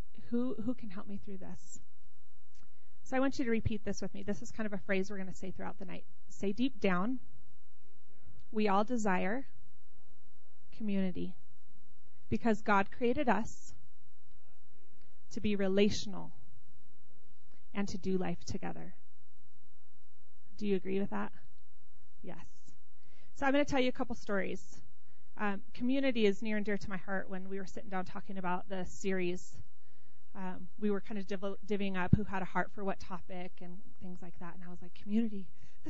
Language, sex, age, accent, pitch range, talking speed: English, female, 30-49, American, 180-250 Hz, 175 wpm